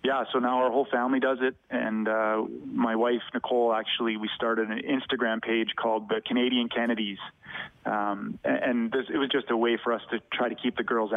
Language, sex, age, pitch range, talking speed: English, male, 30-49, 115-125 Hz, 205 wpm